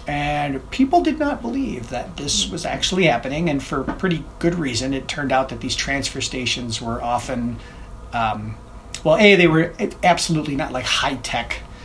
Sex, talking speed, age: male, 165 wpm, 30-49